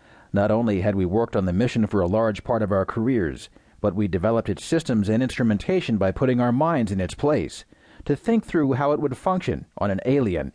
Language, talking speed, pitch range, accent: English, 220 wpm, 100-140 Hz, American